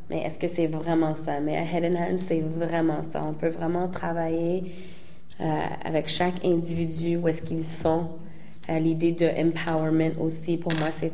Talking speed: 185 wpm